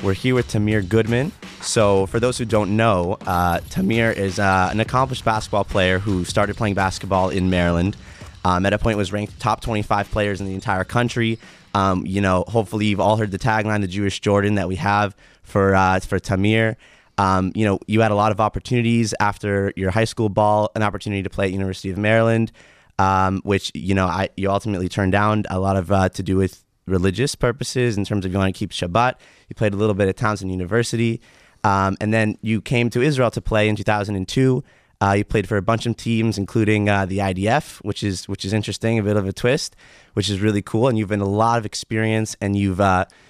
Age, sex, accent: 20-39, male, American